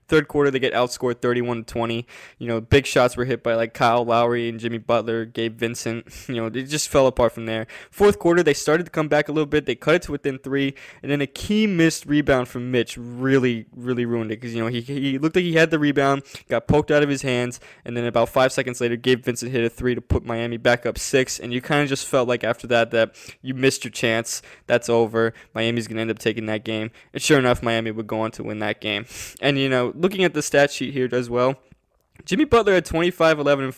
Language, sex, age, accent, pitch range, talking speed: English, male, 20-39, American, 120-150 Hz, 255 wpm